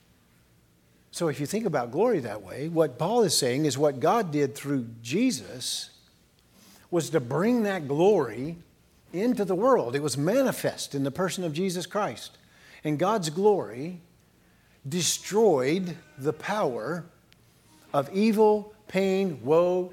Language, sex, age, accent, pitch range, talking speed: English, male, 50-69, American, 135-185 Hz, 135 wpm